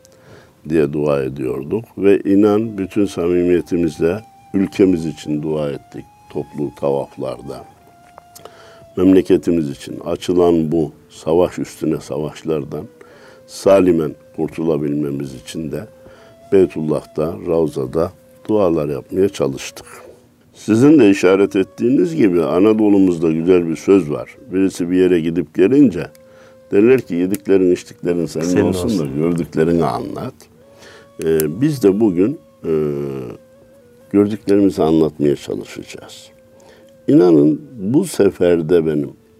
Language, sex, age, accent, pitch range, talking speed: Turkish, male, 60-79, native, 80-105 Hz, 95 wpm